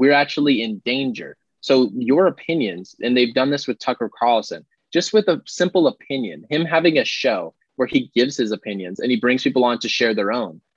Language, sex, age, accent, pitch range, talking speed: English, male, 20-39, American, 115-155 Hz, 205 wpm